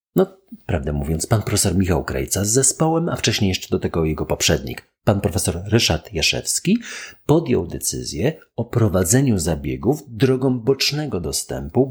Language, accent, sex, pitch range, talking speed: Polish, native, male, 85-130 Hz, 140 wpm